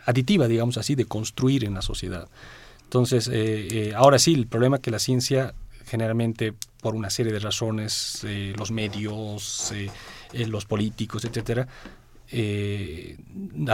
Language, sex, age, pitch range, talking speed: Spanish, male, 40-59, 110-130 Hz, 150 wpm